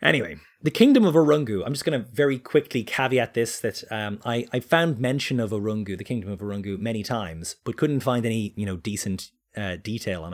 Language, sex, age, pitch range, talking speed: English, male, 20-39, 100-130 Hz, 215 wpm